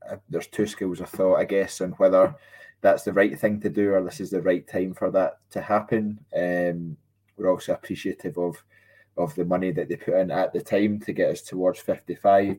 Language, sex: English, male